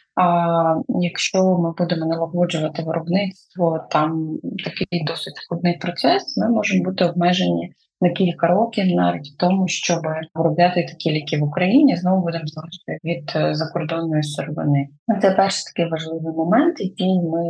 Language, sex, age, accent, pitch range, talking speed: Ukrainian, female, 20-39, native, 165-195 Hz, 135 wpm